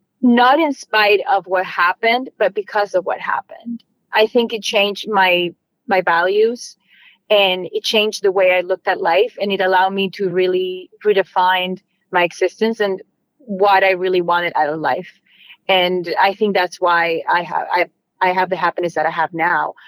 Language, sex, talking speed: English, female, 180 wpm